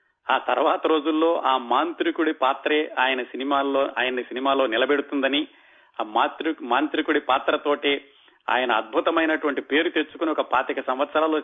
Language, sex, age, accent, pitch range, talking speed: Telugu, male, 40-59, native, 135-165 Hz, 115 wpm